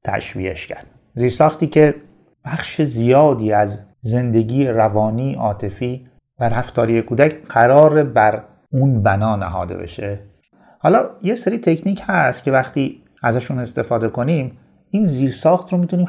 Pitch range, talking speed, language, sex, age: 110-150 Hz, 125 wpm, Persian, male, 30-49